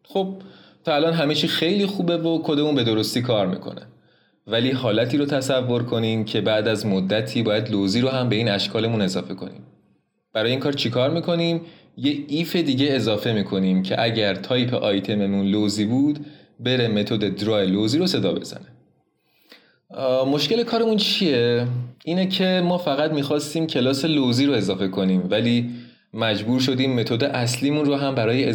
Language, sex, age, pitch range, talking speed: Persian, male, 20-39, 110-145 Hz, 155 wpm